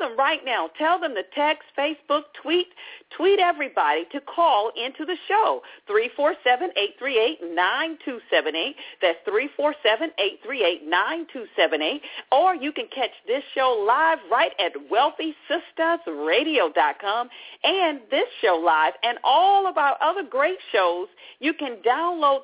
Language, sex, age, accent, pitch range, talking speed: English, female, 50-69, American, 235-355 Hz, 115 wpm